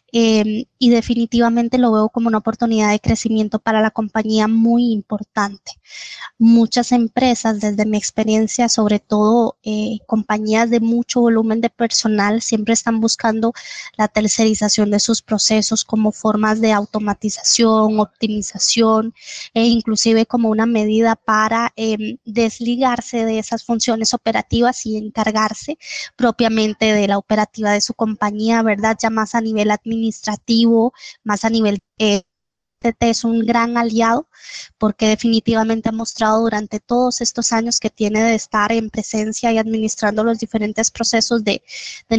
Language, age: Spanish, 20-39